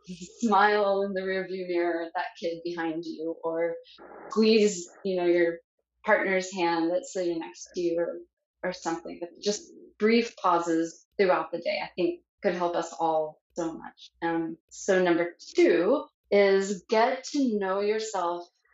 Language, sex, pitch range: English, female, 175-215 Hz